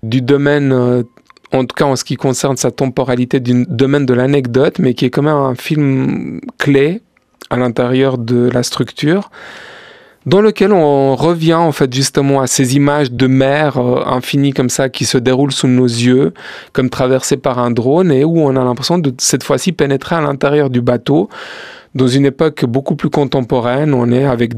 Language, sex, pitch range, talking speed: French, male, 130-150 Hz, 190 wpm